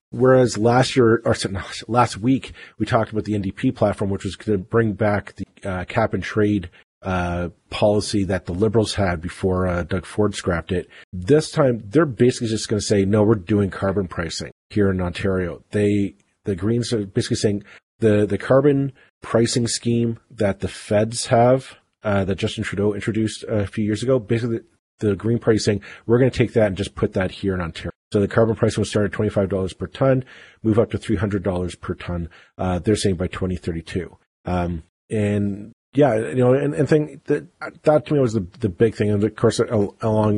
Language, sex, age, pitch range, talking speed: English, male, 40-59, 95-115 Hz, 200 wpm